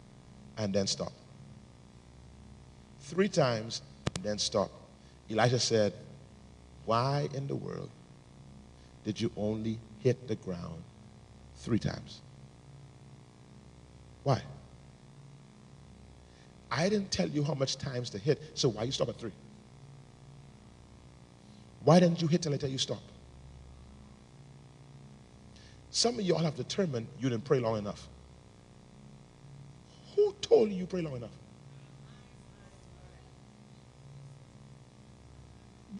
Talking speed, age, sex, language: 105 wpm, 40-59, male, English